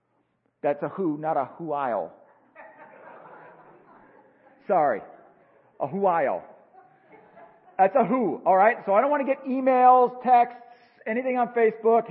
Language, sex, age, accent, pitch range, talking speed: English, male, 40-59, American, 180-235 Hz, 125 wpm